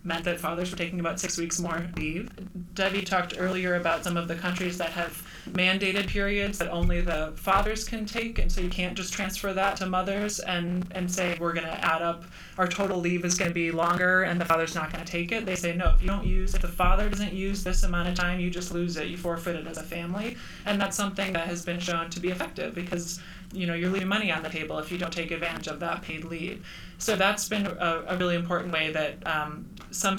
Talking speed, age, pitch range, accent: 245 wpm, 20-39, 170-200 Hz, American